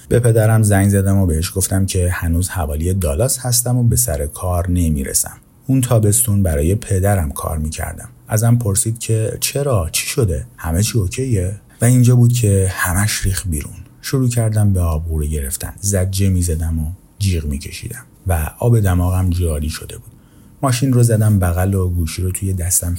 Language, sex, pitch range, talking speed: Persian, male, 85-110 Hz, 170 wpm